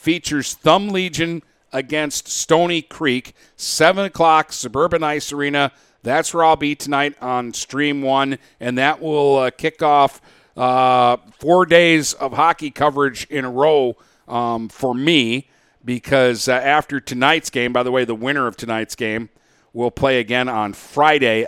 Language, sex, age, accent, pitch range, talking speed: English, male, 50-69, American, 110-140 Hz, 155 wpm